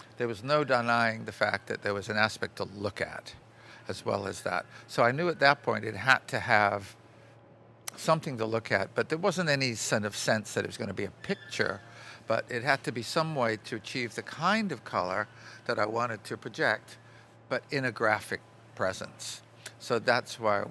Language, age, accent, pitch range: English, 50-69, American, 105-135 Hz